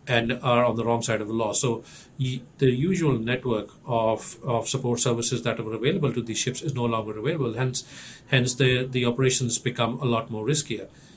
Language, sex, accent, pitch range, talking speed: English, male, Indian, 115-135 Hz, 200 wpm